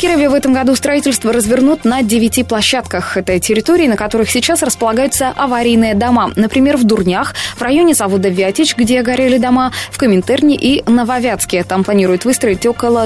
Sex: female